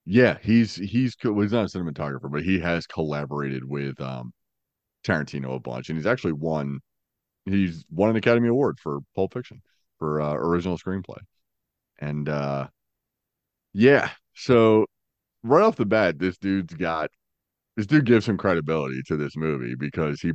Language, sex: English, male